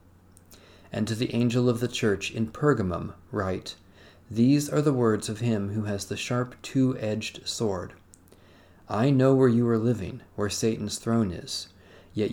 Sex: male